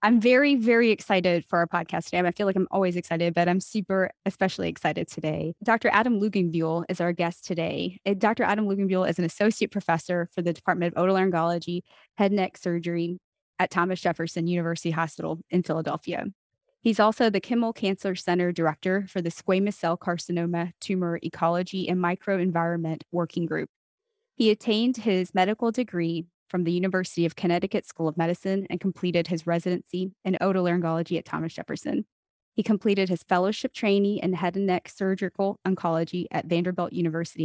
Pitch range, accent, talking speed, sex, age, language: 170-195 Hz, American, 165 wpm, female, 20-39, English